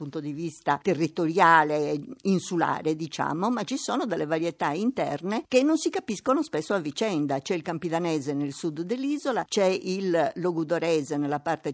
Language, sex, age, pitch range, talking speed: Italian, female, 50-69, 155-220 Hz, 160 wpm